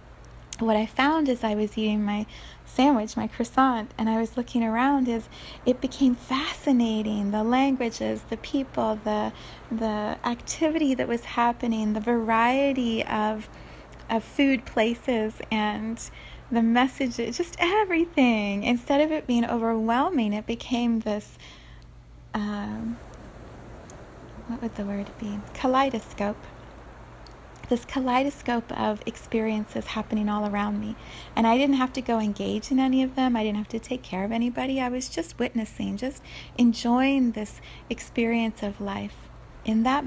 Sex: female